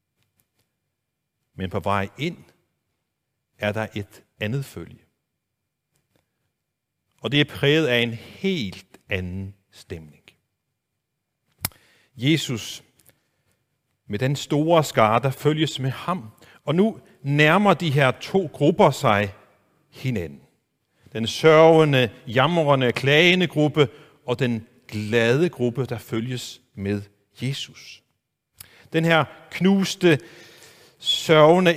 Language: Danish